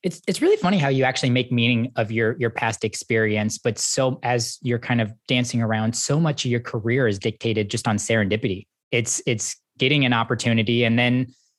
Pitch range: 120-140 Hz